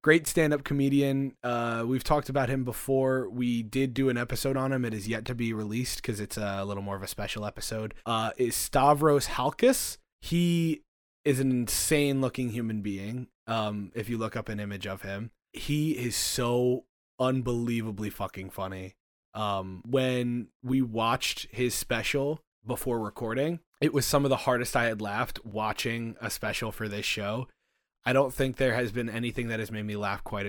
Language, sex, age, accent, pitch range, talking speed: English, male, 20-39, American, 105-130 Hz, 180 wpm